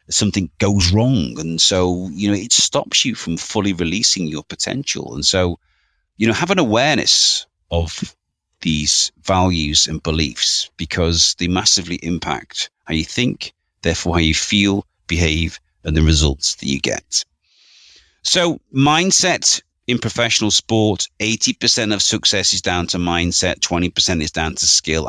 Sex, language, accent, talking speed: male, English, British, 150 wpm